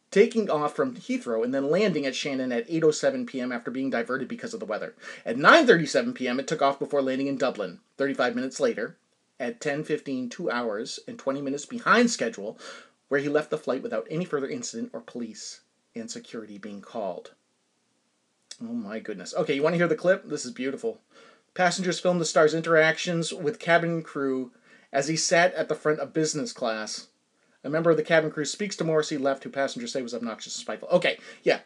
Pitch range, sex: 140-220 Hz, male